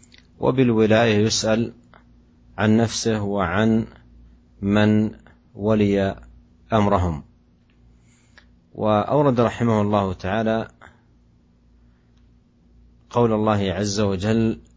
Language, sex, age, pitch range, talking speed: Indonesian, male, 40-59, 80-110 Hz, 65 wpm